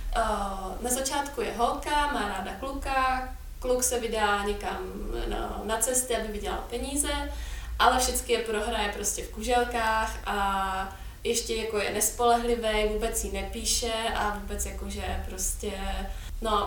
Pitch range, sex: 200-235 Hz, female